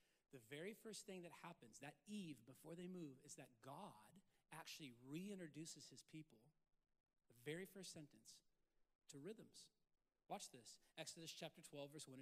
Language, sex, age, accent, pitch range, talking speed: English, male, 40-59, American, 160-205 Hz, 150 wpm